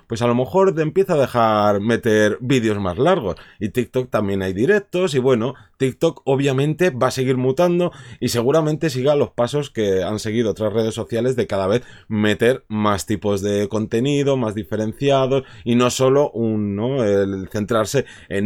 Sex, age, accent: male, 30-49, Spanish